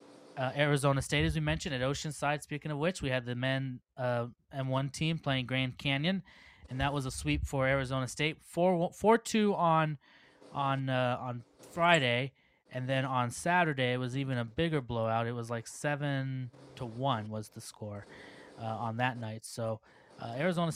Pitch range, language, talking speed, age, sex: 125-155 Hz, English, 180 wpm, 20-39, male